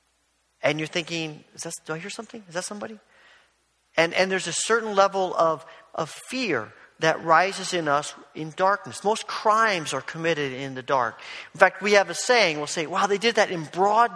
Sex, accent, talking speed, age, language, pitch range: male, American, 205 wpm, 50-69, English, 145-180 Hz